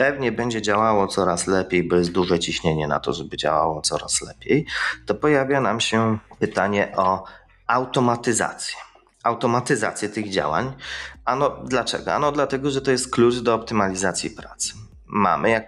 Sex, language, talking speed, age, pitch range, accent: male, Polish, 150 wpm, 30-49, 95-120 Hz, native